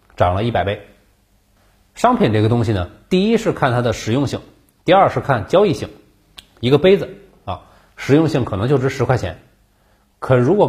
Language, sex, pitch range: Chinese, male, 100-140 Hz